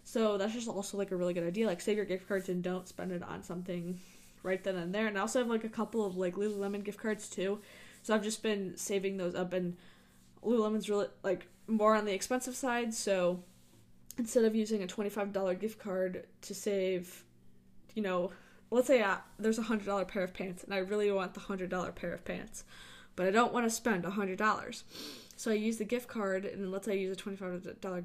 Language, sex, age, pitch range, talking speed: English, female, 10-29, 185-225 Hz, 220 wpm